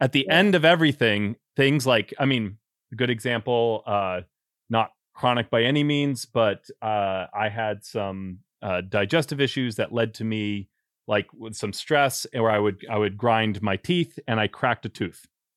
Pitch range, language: 110-150 Hz, English